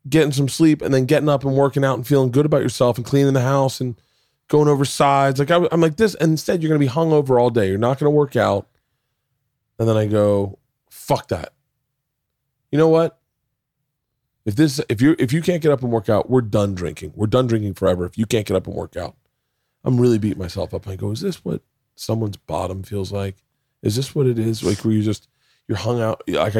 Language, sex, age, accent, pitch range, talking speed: English, male, 20-39, American, 100-135 Hz, 235 wpm